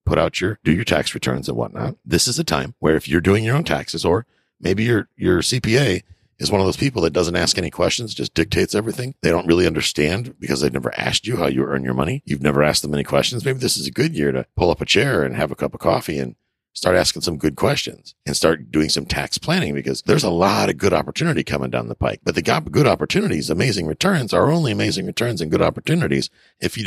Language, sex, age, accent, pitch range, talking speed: English, male, 50-69, American, 70-105 Hz, 255 wpm